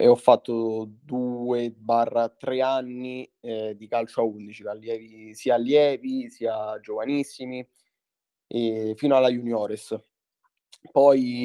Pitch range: 110-130 Hz